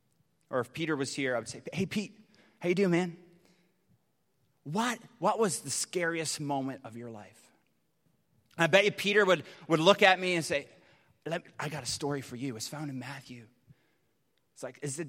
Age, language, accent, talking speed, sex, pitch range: 30-49, English, American, 205 wpm, male, 145-190 Hz